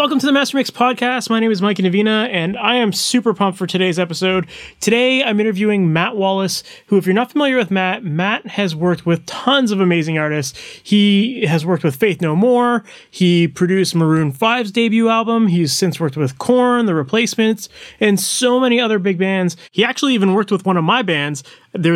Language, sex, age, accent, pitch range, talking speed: English, male, 30-49, American, 160-215 Hz, 205 wpm